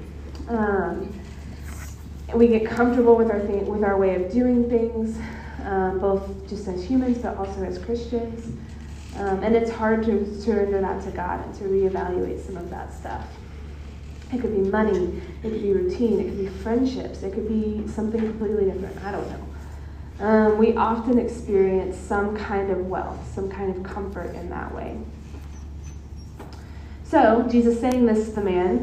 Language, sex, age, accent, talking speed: English, female, 20-39, American, 170 wpm